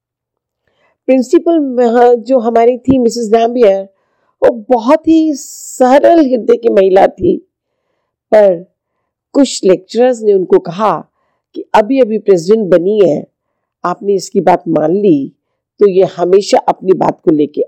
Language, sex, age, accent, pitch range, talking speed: Hindi, female, 50-69, native, 190-255 Hz, 130 wpm